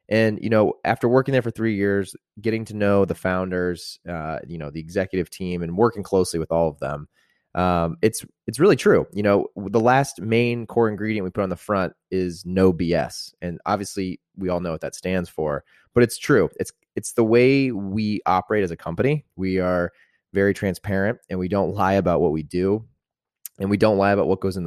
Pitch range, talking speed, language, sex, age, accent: 90-110 Hz, 215 wpm, English, male, 20-39, American